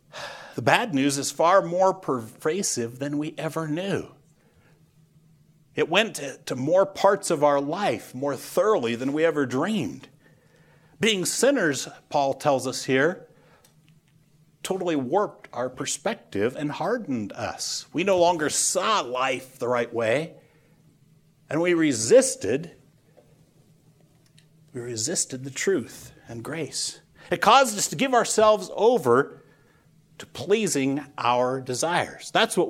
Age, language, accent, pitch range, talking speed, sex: 60-79, English, American, 140-175 Hz, 125 wpm, male